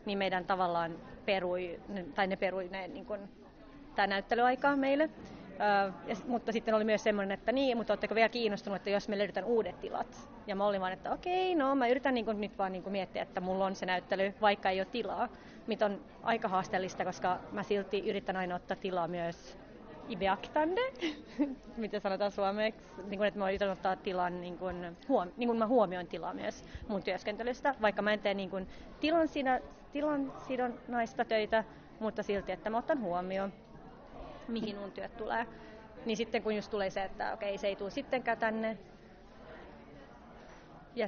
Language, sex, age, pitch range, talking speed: Finnish, female, 30-49, 195-235 Hz, 180 wpm